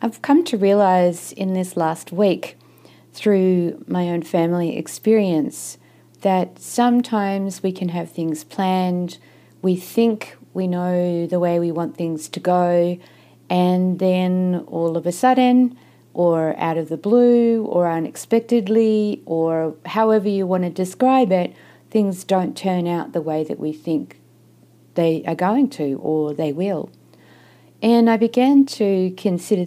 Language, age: English, 40-59